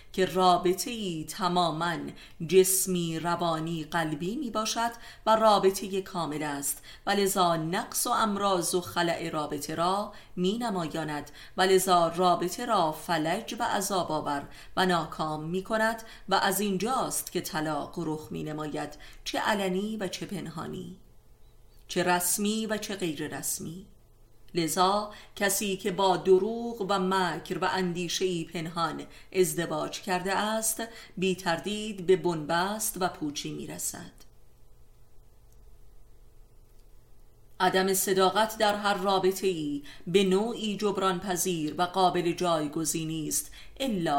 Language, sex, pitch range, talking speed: Persian, female, 160-195 Hz, 115 wpm